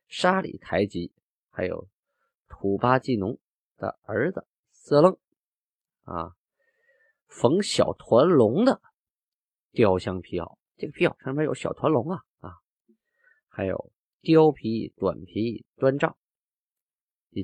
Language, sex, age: Chinese, male, 20-39